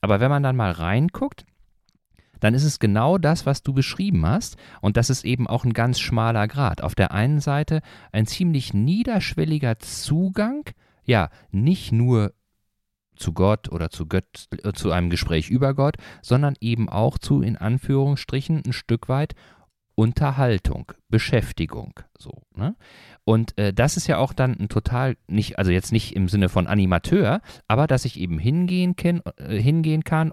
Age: 40-59